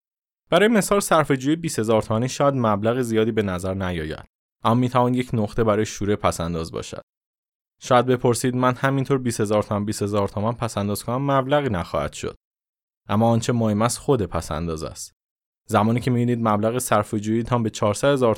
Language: Persian